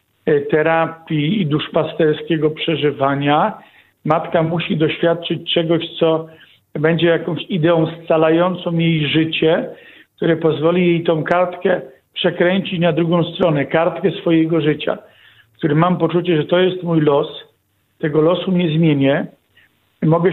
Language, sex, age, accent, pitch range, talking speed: Polish, male, 50-69, native, 155-175 Hz, 120 wpm